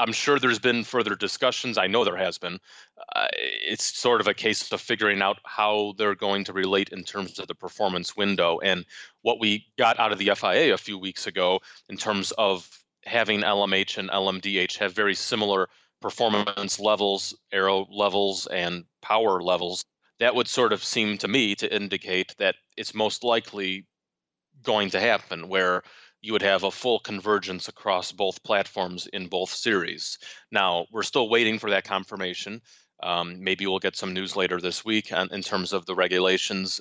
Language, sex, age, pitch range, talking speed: English, male, 30-49, 90-105 Hz, 180 wpm